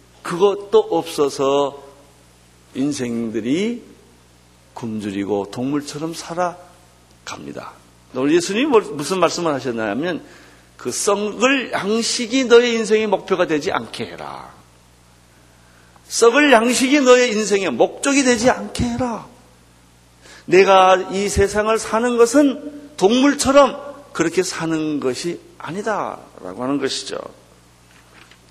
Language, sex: Korean, male